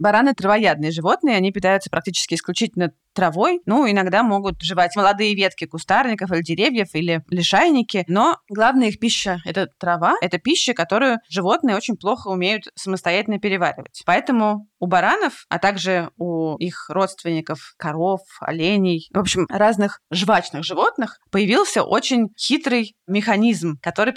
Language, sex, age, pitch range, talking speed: Russian, female, 20-39, 180-225 Hz, 135 wpm